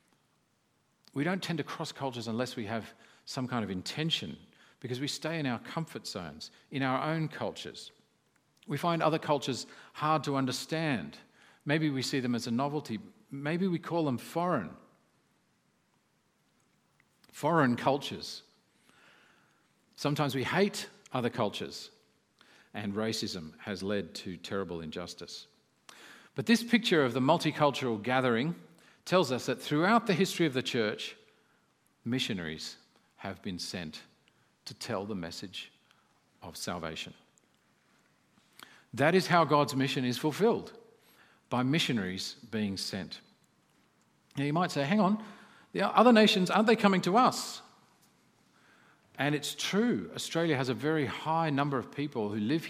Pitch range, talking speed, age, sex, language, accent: 120-165 Hz, 140 wpm, 50-69, male, English, Australian